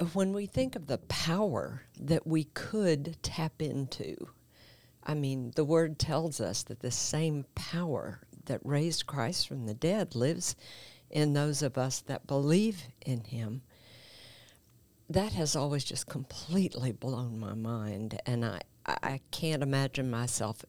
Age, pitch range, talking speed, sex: 50-69, 120-160 Hz, 145 wpm, female